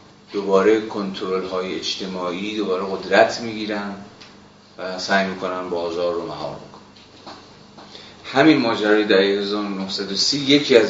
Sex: male